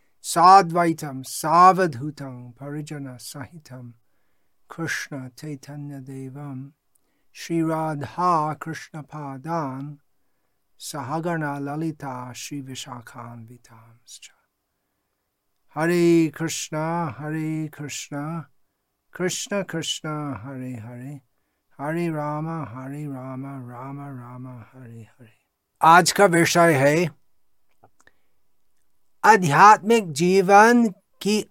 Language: Hindi